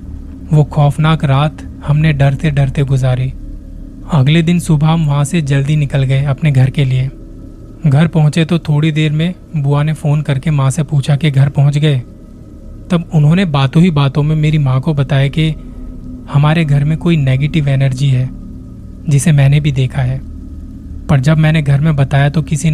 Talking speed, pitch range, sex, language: 180 wpm, 130-155 Hz, male, Hindi